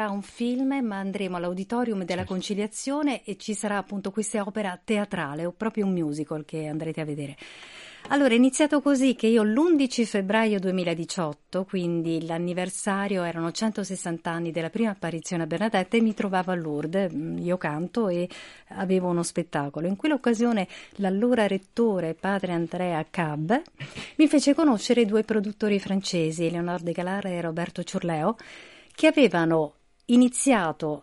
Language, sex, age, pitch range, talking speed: Italian, female, 50-69, 175-225 Hz, 140 wpm